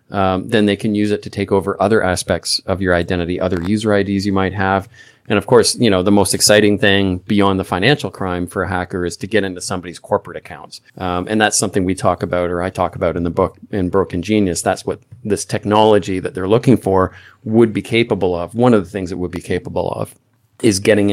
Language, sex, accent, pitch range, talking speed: English, male, American, 95-105 Hz, 235 wpm